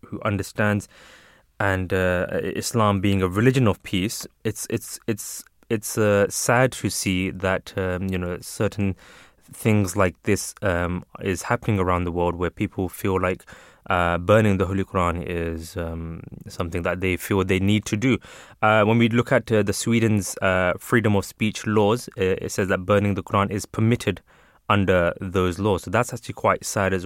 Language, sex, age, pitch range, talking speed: English, male, 20-39, 95-110 Hz, 180 wpm